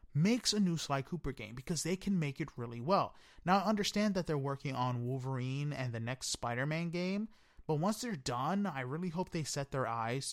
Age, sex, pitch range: 30-49, male, 125-185 Hz